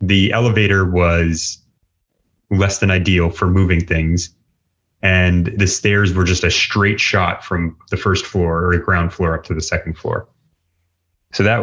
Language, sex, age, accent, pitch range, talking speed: English, male, 30-49, American, 85-95 Hz, 160 wpm